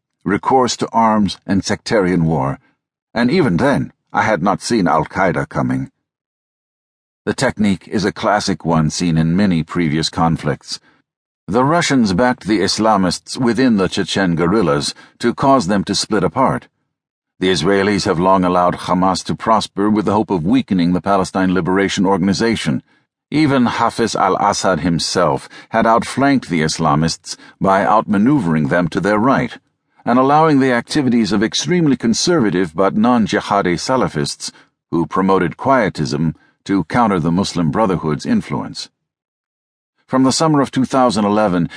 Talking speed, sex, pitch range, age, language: 140 wpm, male, 90-130 Hz, 60-79, English